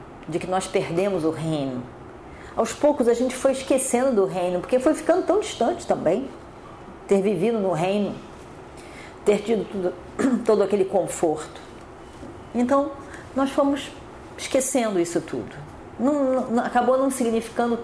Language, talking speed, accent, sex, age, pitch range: Portuguese, 130 wpm, Brazilian, female, 40-59, 195-255 Hz